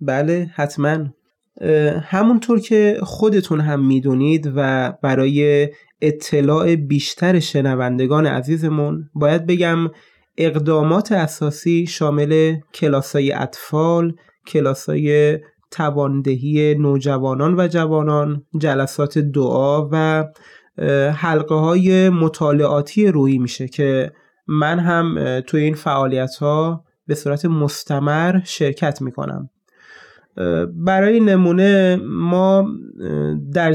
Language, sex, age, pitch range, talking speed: Persian, male, 20-39, 145-175 Hz, 85 wpm